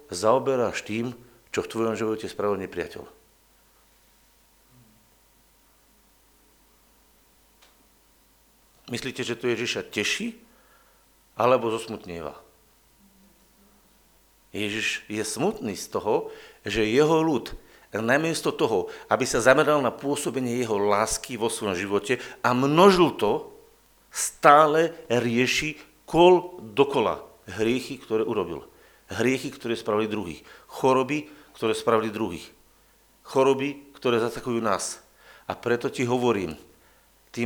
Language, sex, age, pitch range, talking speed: Slovak, male, 50-69, 115-145 Hz, 100 wpm